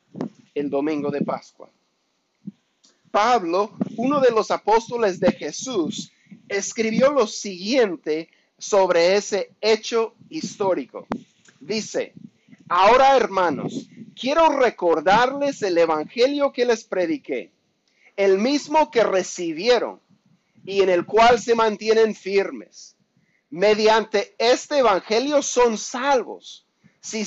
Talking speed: 100 wpm